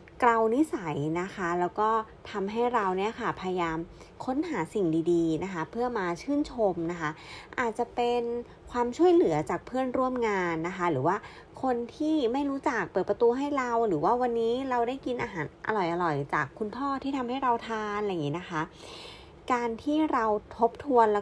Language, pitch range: Thai, 170-235 Hz